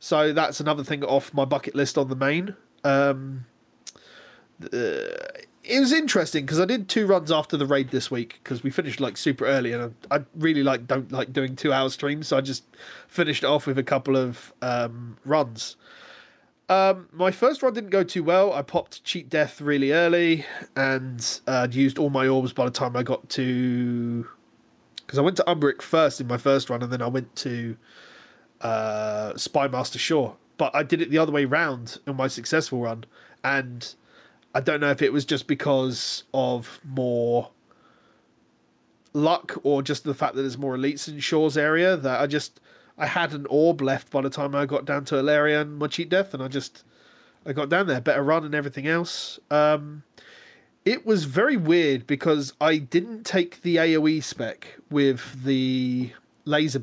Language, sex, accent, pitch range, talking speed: English, male, British, 130-160 Hz, 190 wpm